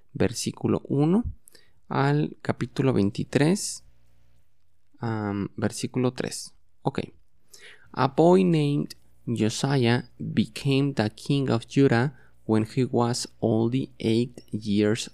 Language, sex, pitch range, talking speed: English, male, 100-135 Hz, 95 wpm